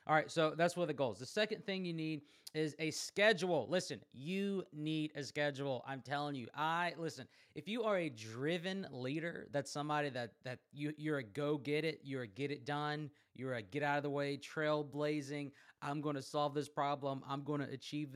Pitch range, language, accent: 130-160 Hz, English, American